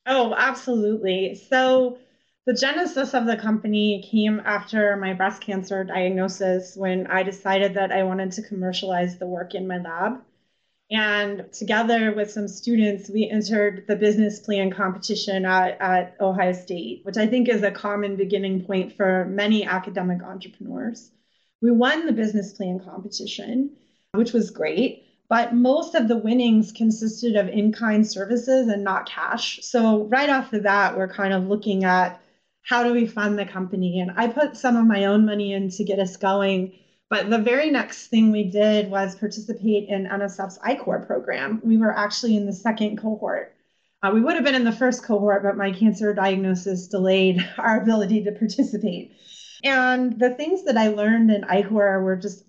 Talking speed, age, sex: 175 wpm, 30-49, female